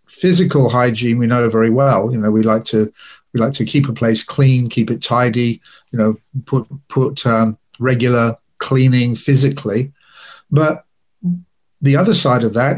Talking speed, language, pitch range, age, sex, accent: 165 wpm, English, 120-155 Hz, 50-69, male, British